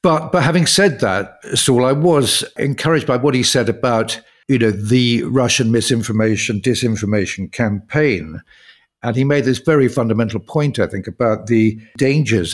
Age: 60-79